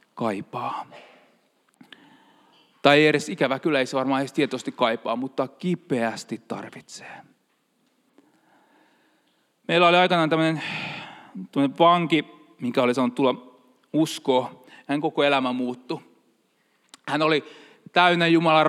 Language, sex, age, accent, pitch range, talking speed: Finnish, male, 30-49, native, 140-185 Hz, 100 wpm